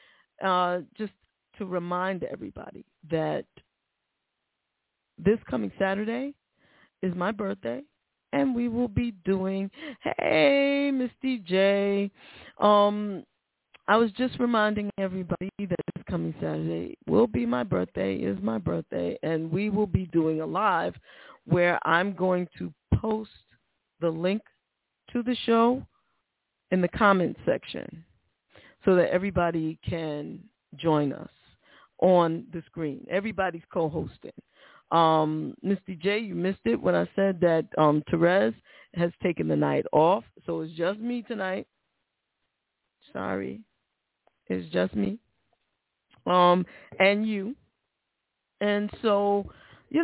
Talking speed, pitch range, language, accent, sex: 120 wpm, 165-215 Hz, English, American, female